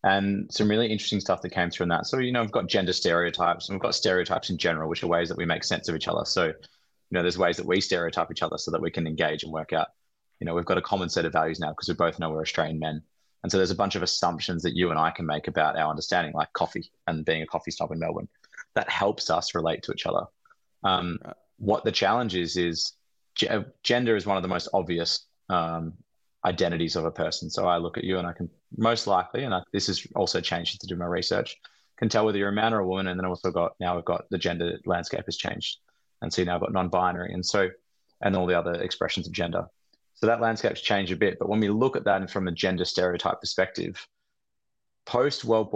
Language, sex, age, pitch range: English, male, 20-39, 85-100 Hz